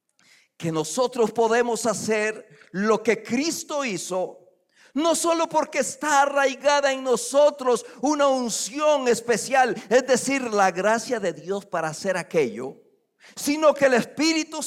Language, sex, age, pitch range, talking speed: Spanish, male, 50-69, 175-260 Hz, 125 wpm